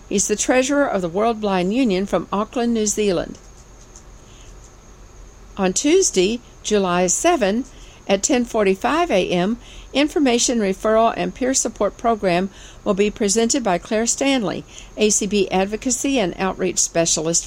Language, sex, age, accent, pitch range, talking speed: English, female, 60-79, American, 190-240 Hz, 125 wpm